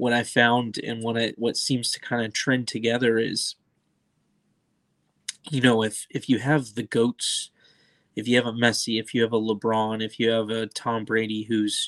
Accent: American